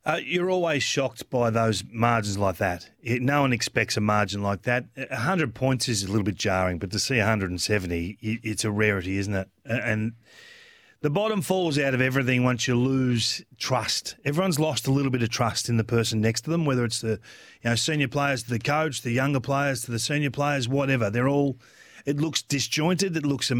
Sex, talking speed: male, 205 wpm